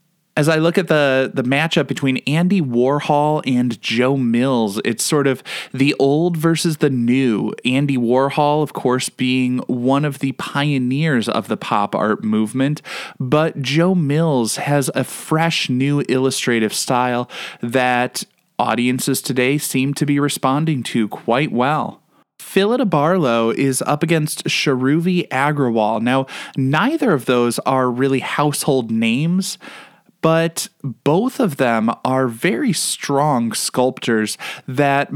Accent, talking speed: American, 135 wpm